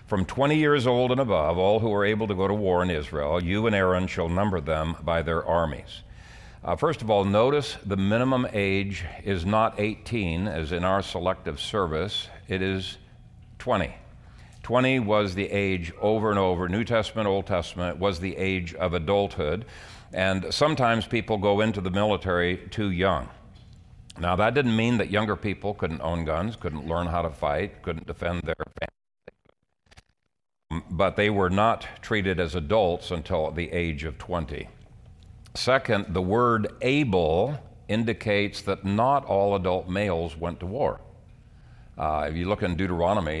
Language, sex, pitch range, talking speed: English, male, 85-105 Hz, 165 wpm